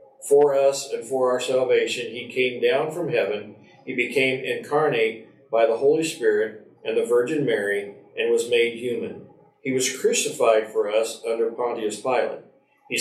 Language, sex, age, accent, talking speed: English, male, 50-69, American, 160 wpm